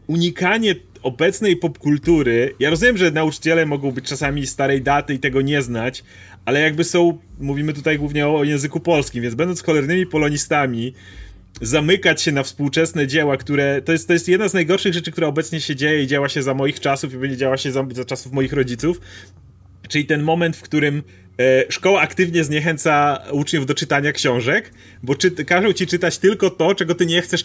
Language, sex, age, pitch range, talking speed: Polish, male, 30-49, 125-160 Hz, 185 wpm